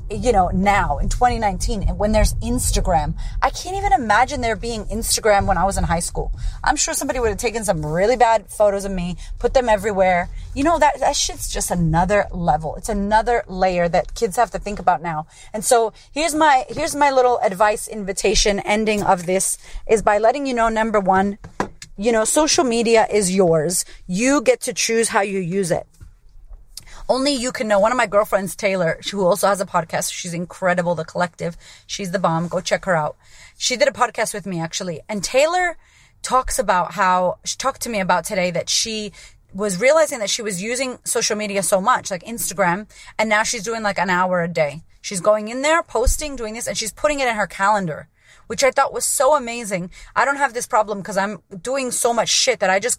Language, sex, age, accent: English, female, 30-49, American